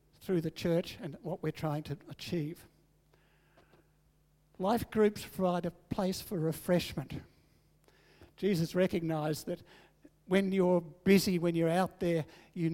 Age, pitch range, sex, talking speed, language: 60-79, 155-185 Hz, male, 125 wpm, English